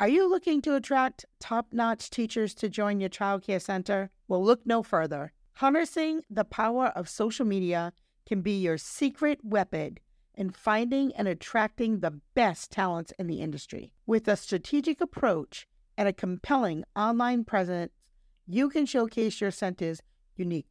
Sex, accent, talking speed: female, American, 155 wpm